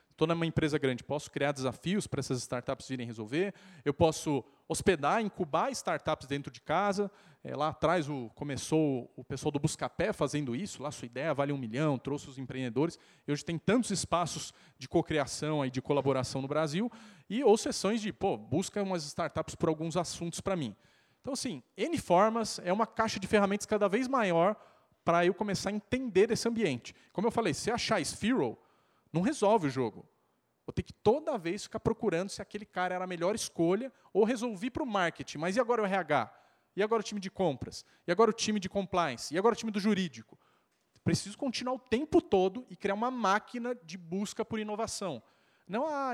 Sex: male